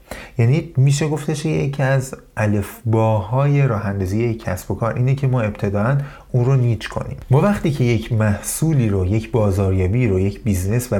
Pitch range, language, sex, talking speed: 100-145 Hz, Persian, male, 170 wpm